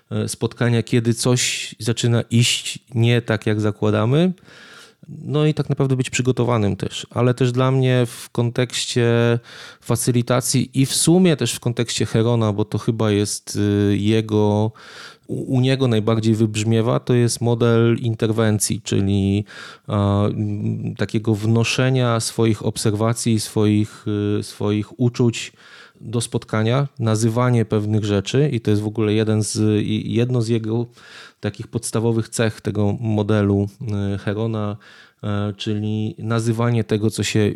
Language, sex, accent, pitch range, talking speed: Polish, male, native, 110-125 Hz, 125 wpm